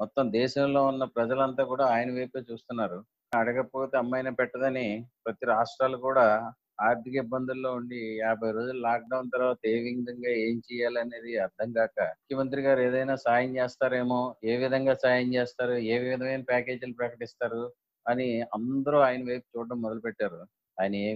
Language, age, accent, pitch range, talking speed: Telugu, 30-49, native, 115-130 Hz, 140 wpm